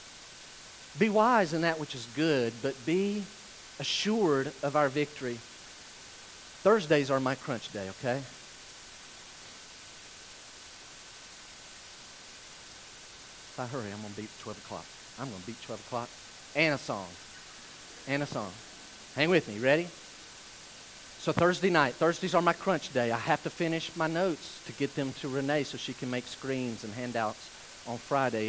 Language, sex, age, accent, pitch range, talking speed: English, male, 40-59, American, 125-160 Hz, 150 wpm